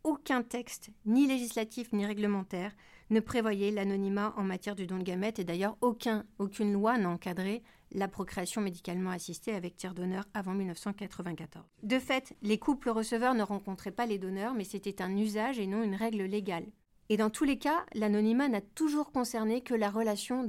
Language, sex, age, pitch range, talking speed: French, female, 40-59, 205-250 Hz, 180 wpm